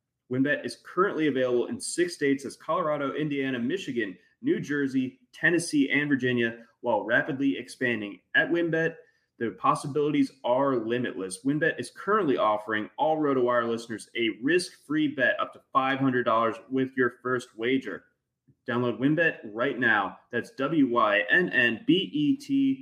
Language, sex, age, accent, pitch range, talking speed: English, male, 20-39, American, 120-160 Hz, 125 wpm